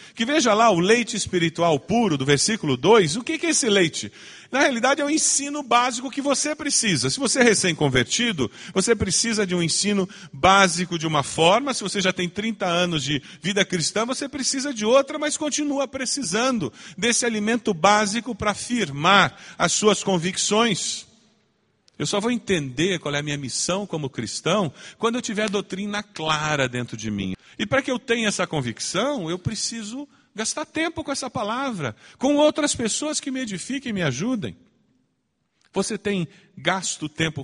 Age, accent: 40-59, Brazilian